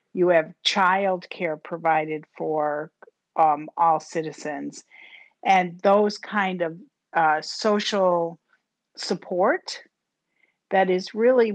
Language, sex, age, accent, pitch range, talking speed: English, female, 50-69, American, 170-215 Hz, 95 wpm